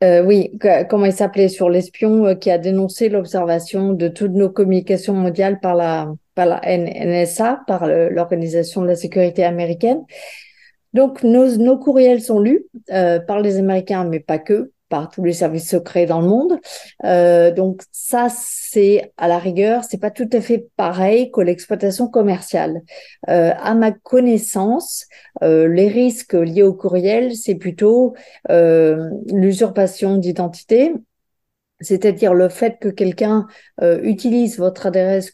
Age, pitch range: 40-59, 175-210 Hz